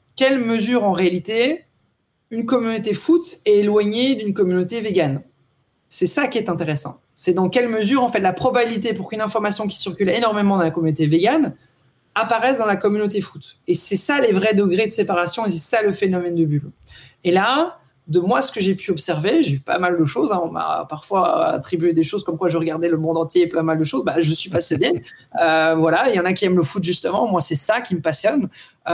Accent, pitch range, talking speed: French, 175-240 Hz, 230 wpm